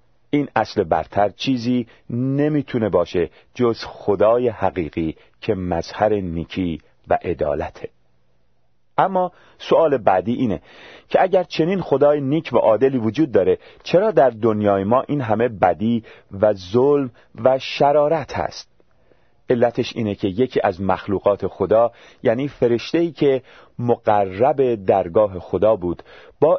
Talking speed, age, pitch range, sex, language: 120 wpm, 40-59, 95-130 Hz, male, Persian